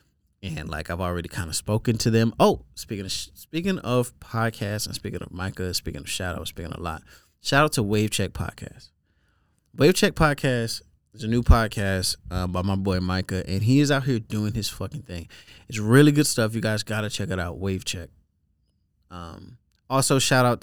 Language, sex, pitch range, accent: English, male, 90-115 Hz, American